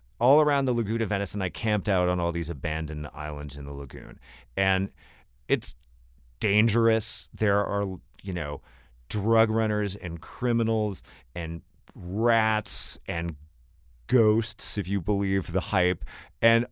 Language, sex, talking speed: English, male, 135 wpm